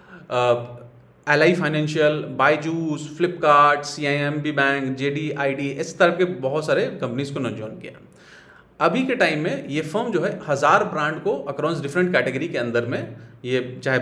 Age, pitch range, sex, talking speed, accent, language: 40-59, 140-190 Hz, male, 160 wpm, native, Hindi